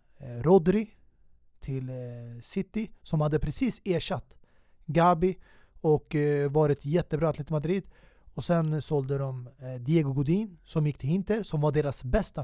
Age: 30-49